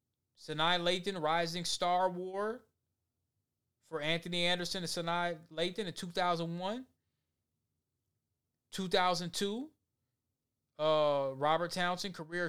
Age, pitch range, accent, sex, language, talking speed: 20-39, 150-195 Hz, American, male, English, 105 wpm